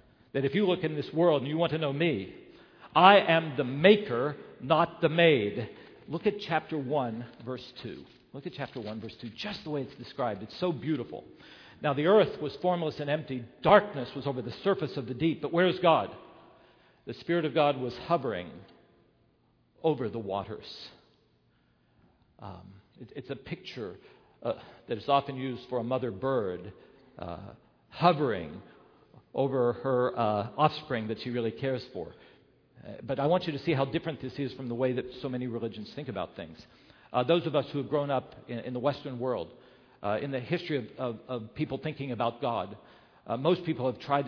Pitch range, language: 125-155 Hz, English